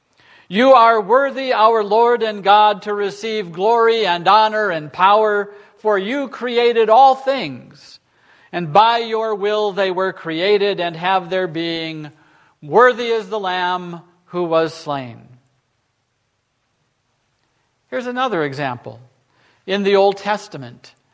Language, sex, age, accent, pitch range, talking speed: English, male, 50-69, American, 165-220 Hz, 125 wpm